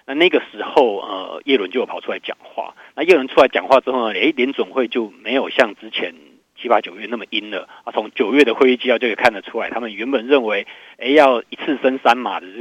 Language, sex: Chinese, male